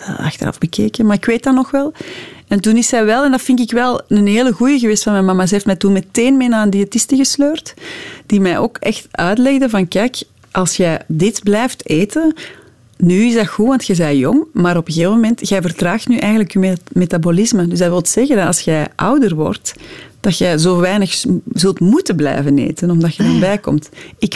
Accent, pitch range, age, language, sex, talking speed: Dutch, 175-230 Hz, 30-49, Dutch, female, 220 wpm